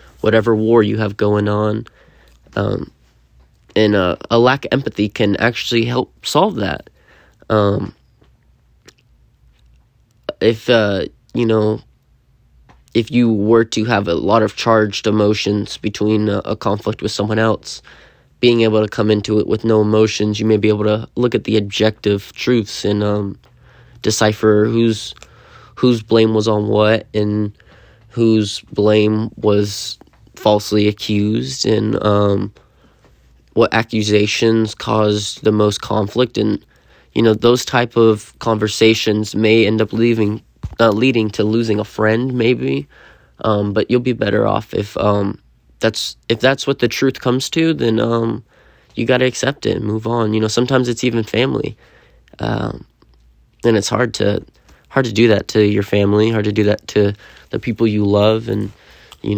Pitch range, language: 105-115 Hz, English